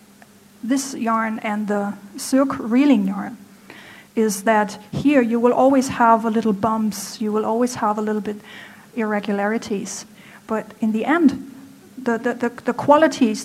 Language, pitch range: Chinese, 215-260 Hz